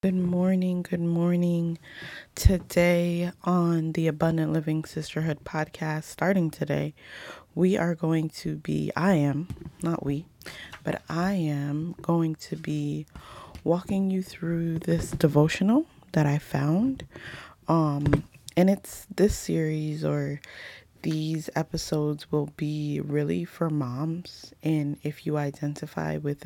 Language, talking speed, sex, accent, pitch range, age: English, 120 wpm, female, American, 140-165 Hz, 20-39